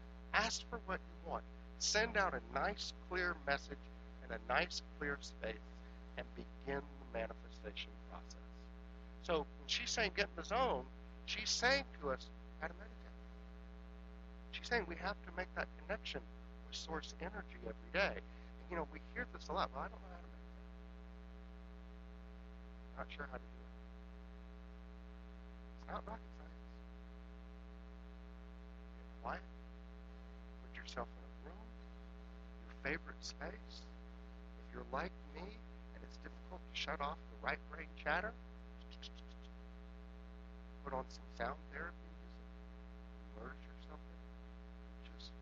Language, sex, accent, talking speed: English, male, American, 140 wpm